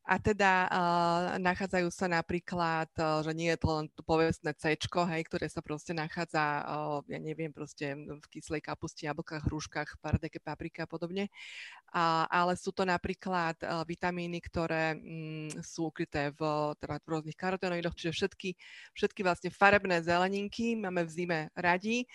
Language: Slovak